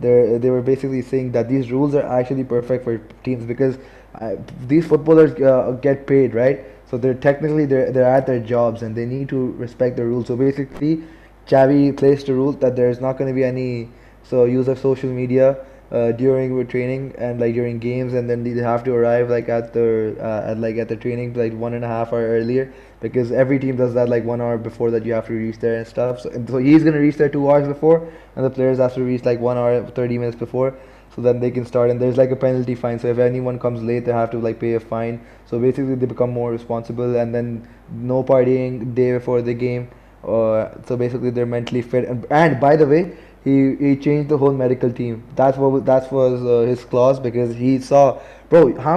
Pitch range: 120-135 Hz